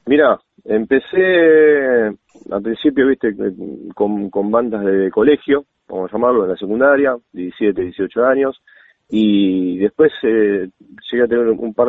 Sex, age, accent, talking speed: male, 30-49, Argentinian, 135 wpm